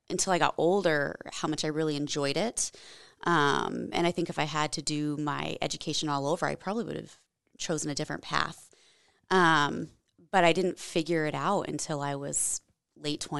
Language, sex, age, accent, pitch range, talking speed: English, female, 20-39, American, 145-160 Hz, 190 wpm